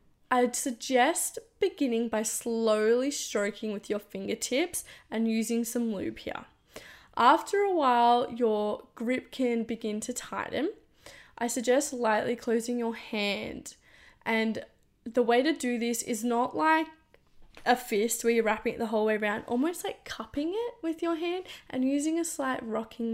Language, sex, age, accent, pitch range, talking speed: English, female, 10-29, Australian, 220-270 Hz, 155 wpm